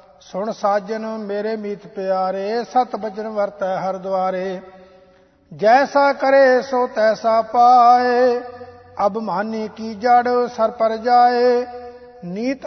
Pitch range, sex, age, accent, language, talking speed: 210-240 Hz, male, 50-69, Indian, English, 110 wpm